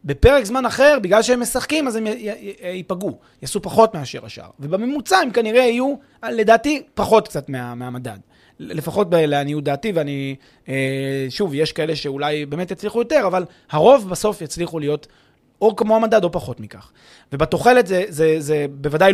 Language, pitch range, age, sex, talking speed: Hebrew, 145-215 Hz, 20-39, male, 170 wpm